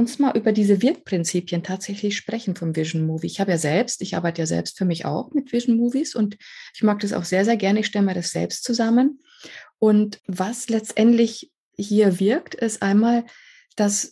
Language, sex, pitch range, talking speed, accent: German, female, 185-225 Hz, 190 wpm, German